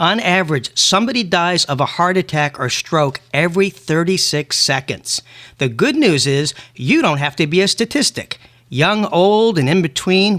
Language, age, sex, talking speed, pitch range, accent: English, 40-59, male, 170 wpm, 150-195 Hz, American